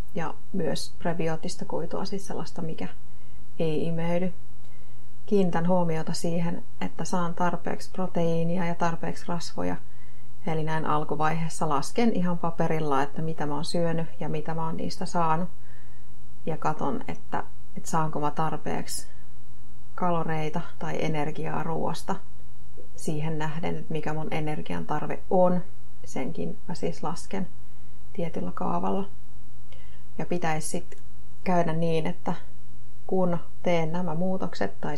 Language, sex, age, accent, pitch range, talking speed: Finnish, female, 30-49, native, 120-170 Hz, 120 wpm